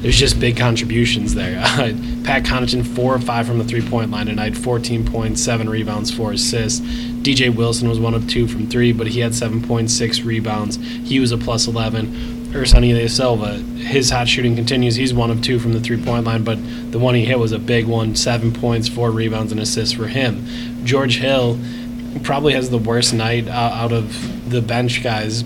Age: 20-39